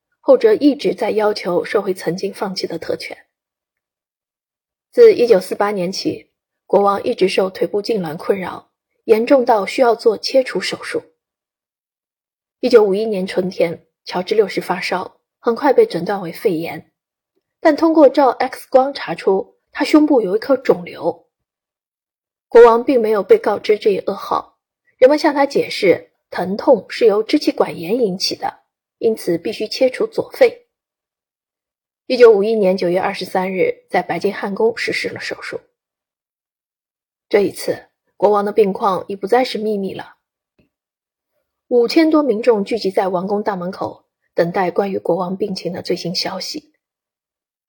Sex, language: female, Chinese